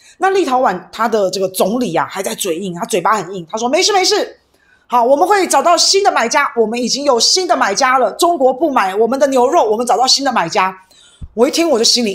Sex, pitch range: female, 185-260 Hz